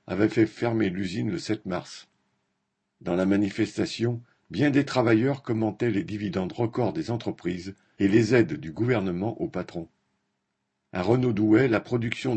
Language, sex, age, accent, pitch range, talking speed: French, male, 50-69, French, 90-115 Hz, 150 wpm